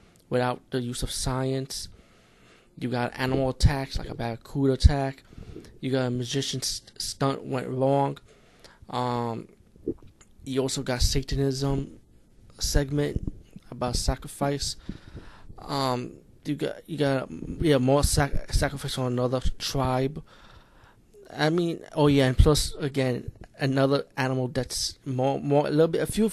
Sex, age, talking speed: male, 20-39, 130 wpm